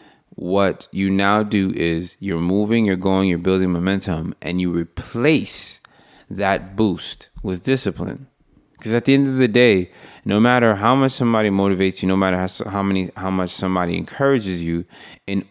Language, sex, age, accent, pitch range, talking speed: English, male, 20-39, American, 90-105 Hz, 170 wpm